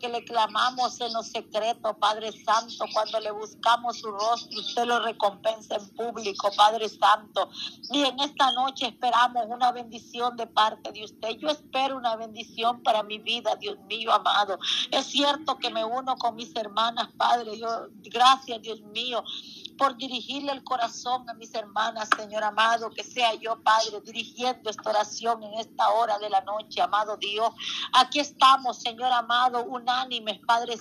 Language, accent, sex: Spanish, American, female